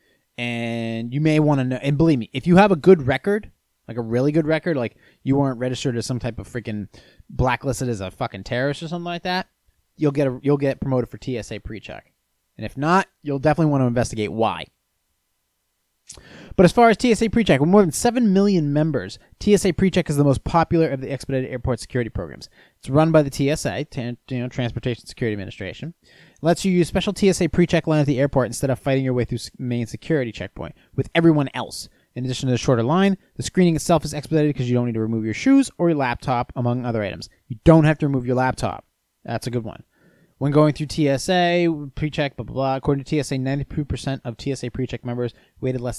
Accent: American